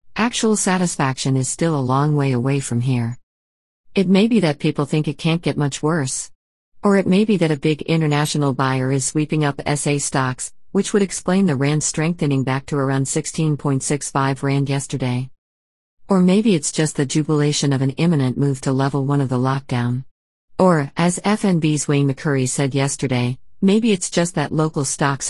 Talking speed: 180 wpm